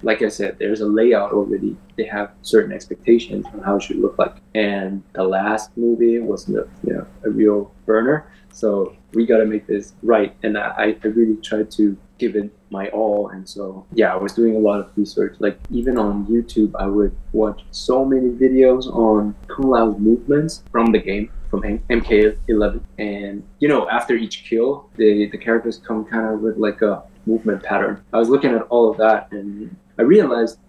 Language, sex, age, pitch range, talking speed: English, male, 20-39, 105-120 Hz, 195 wpm